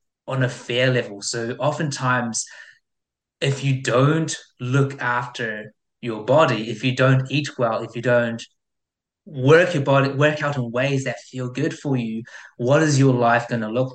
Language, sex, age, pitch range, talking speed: English, male, 20-39, 115-135 Hz, 170 wpm